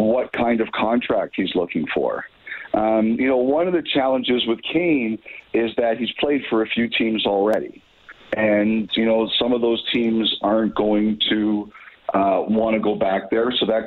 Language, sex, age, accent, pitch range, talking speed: English, male, 50-69, American, 105-120 Hz, 180 wpm